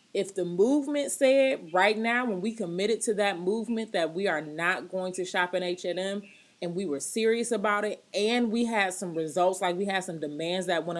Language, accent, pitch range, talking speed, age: English, American, 160-200 Hz, 215 wpm, 30-49